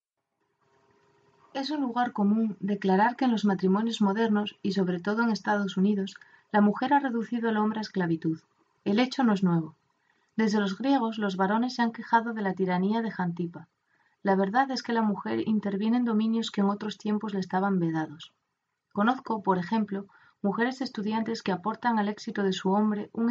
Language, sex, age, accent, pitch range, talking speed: Spanish, female, 30-49, Spanish, 190-230 Hz, 185 wpm